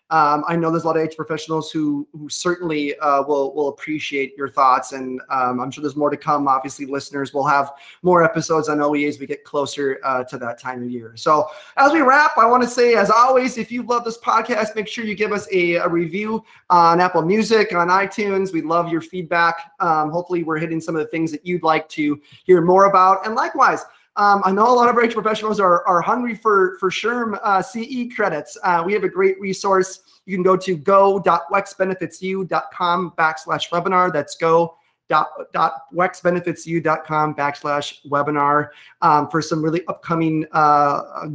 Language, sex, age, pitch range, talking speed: English, male, 30-49, 150-200 Hz, 195 wpm